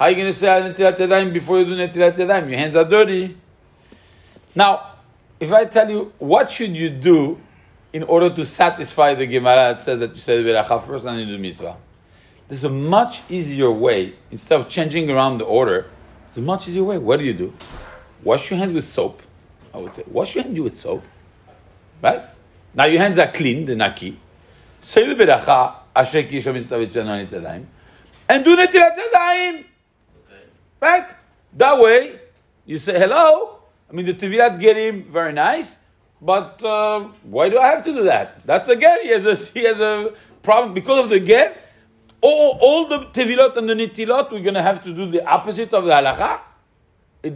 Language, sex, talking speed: English, male, 185 wpm